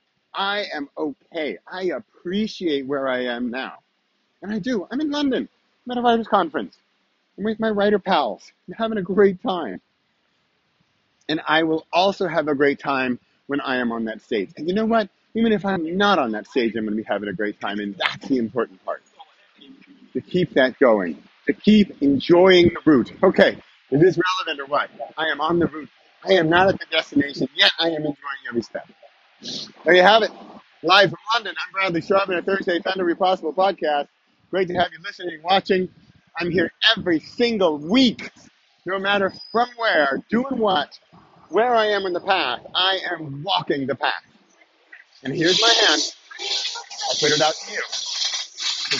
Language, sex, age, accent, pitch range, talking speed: English, male, 40-59, American, 160-220 Hz, 190 wpm